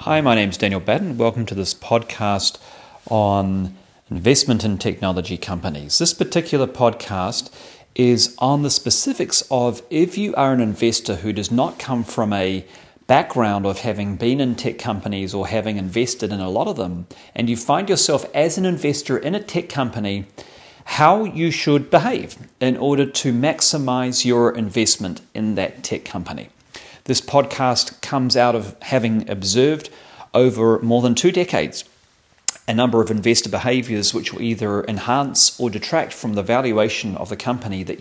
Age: 40-59